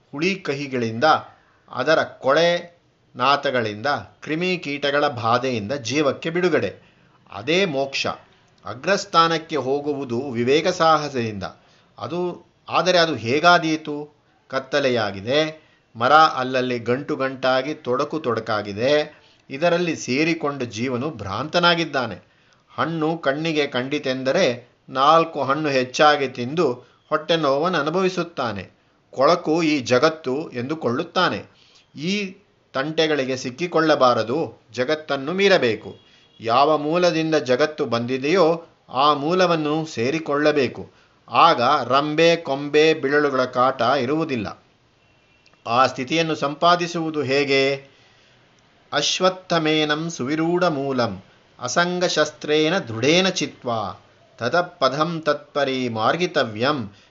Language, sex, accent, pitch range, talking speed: Kannada, male, native, 130-165 Hz, 80 wpm